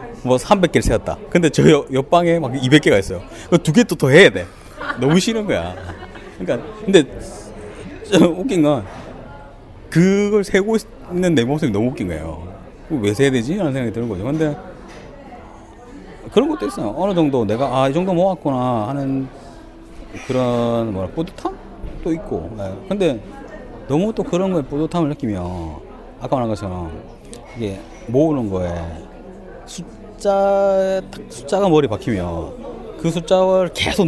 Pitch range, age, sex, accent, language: 105-180 Hz, 30-49, male, native, Korean